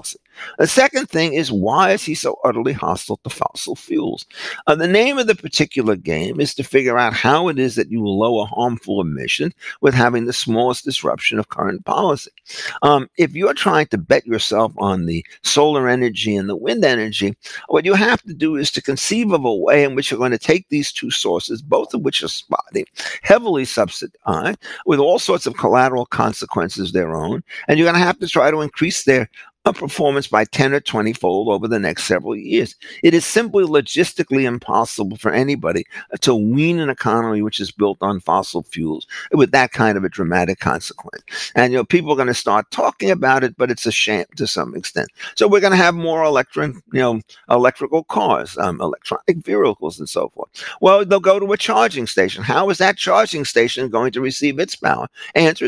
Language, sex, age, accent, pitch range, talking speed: English, male, 50-69, American, 115-175 Hz, 210 wpm